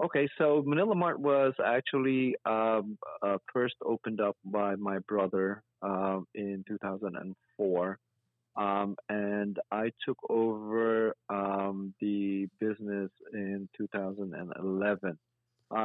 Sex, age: male, 40-59